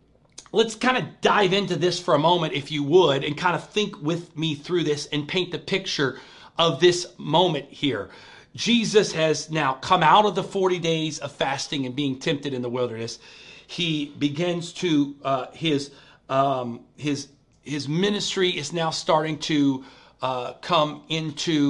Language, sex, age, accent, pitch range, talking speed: English, male, 40-59, American, 140-175 Hz, 170 wpm